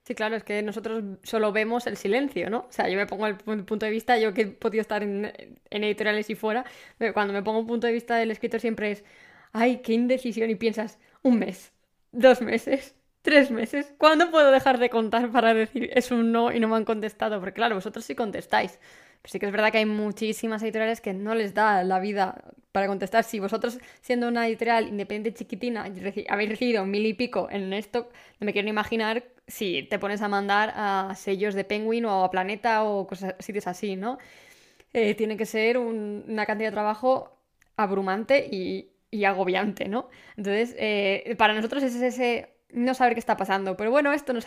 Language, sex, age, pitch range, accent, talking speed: Spanish, female, 10-29, 205-240 Hz, Spanish, 210 wpm